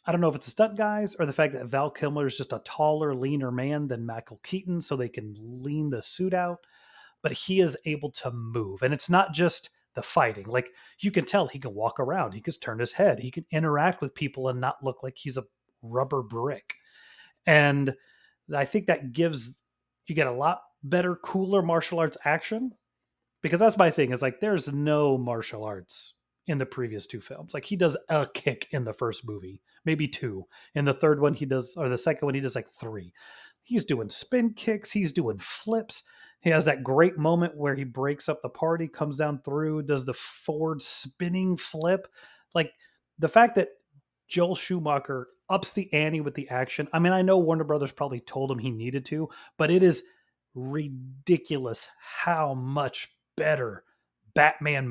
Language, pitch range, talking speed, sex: English, 130-175 Hz, 195 wpm, male